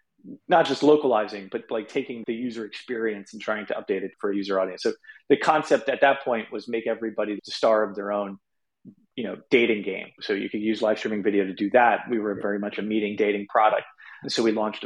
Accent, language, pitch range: American, English, 105-135 Hz